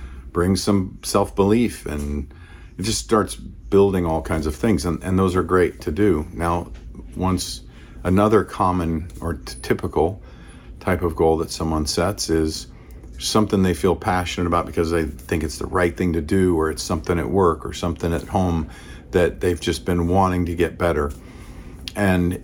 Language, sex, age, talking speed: English, male, 50-69, 170 wpm